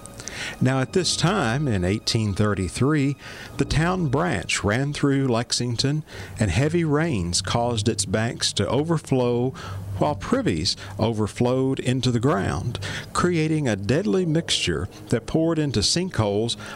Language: English